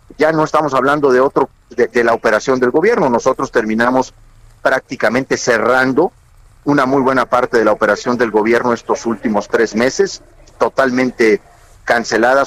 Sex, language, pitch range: male, Spanish, 115-160 Hz